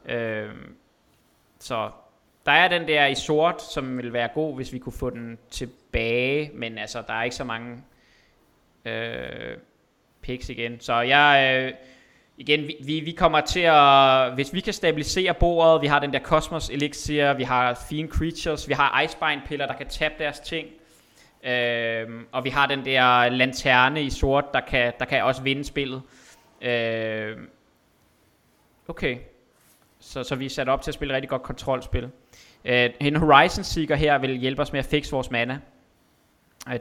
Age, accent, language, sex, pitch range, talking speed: 20-39, native, Danish, male, 125-145 Hz, 170 wpm